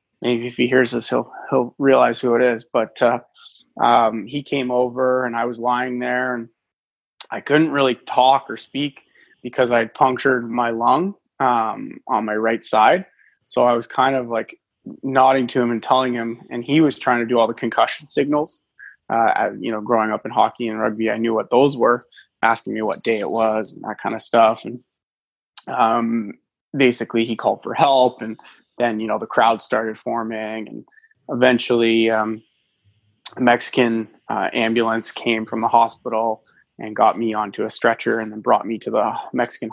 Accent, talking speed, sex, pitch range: American, 190 wpm, male, 115-125 Hz